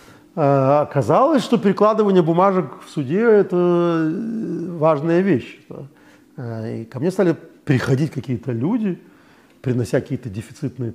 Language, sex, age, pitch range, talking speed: Russian, male, 40-59, 125-175 Hz, 110 wpm